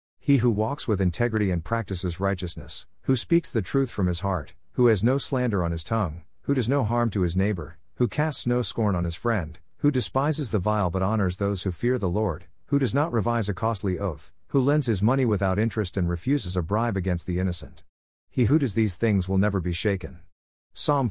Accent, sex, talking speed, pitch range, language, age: American, male, 220 wpm, 90-120 Hz, English, 50-69